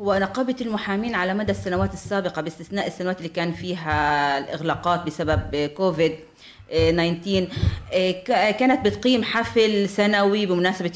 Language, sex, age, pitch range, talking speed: Arabic, female, 30-49, 175-220 Hz, 110 wpm